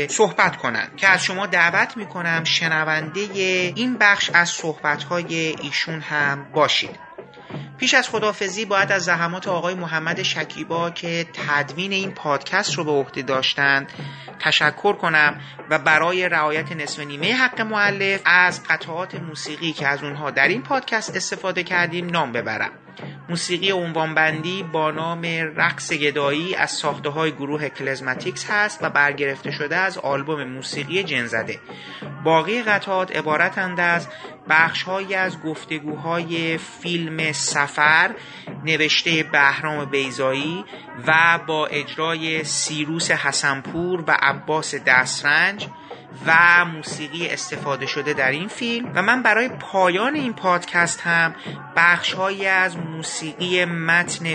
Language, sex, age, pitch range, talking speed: Persian, male, 30-49, 150-185 Hz, 125 wpm